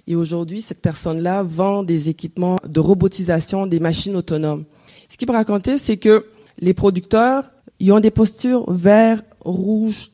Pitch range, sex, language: 170-205 Hz, female, French